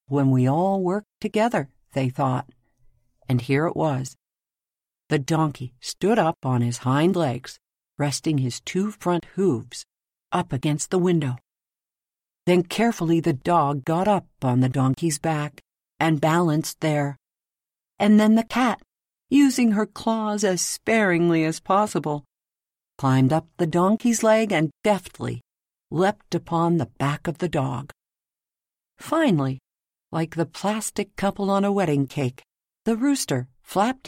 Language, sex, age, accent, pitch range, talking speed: English, female, 50-69, American, 140-205 Hz, 135 wpm